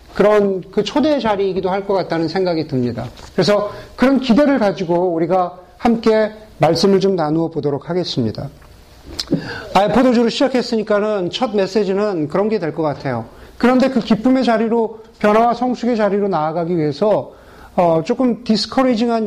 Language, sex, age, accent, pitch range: Korean, male, 40-59, native, 175-235 Hz